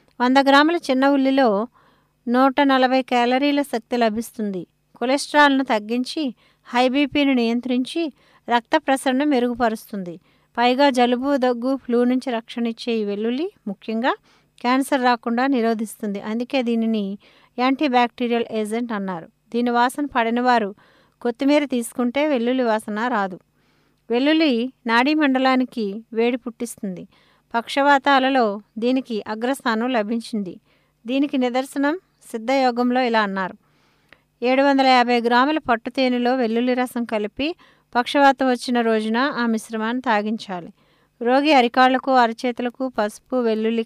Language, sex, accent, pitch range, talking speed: English, female, Indian, 230-265 Hz, 100 wpm